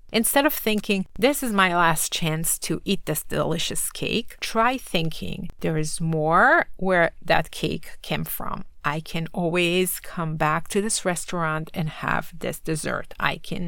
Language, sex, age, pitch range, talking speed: English, female, 30-49, 160-200 Hz, 160 wpm